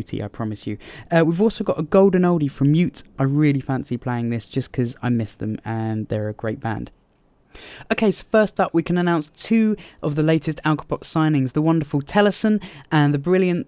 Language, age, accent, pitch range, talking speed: English, 20-39, British, 130-160 Hz, 200 wpm